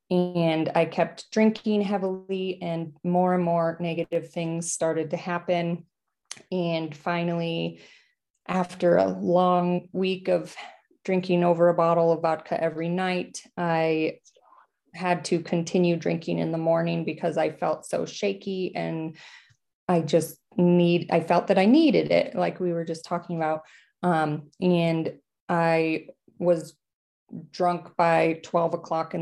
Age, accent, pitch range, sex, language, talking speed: 20-39, American, 165-180 Hz, female, English, 140 wpm